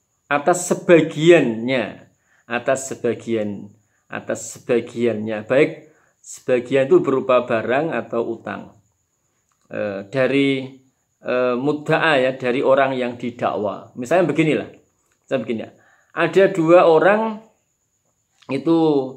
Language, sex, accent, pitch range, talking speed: Indonesian, male, native, 115-145 Hz, 95 wpm